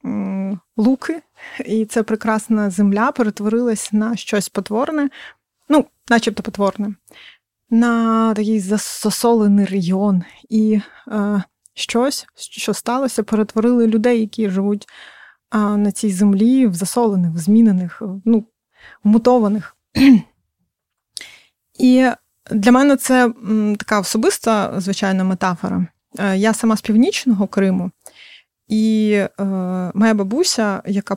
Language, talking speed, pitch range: Ukrainian, 110 wpm, 200-230 Hz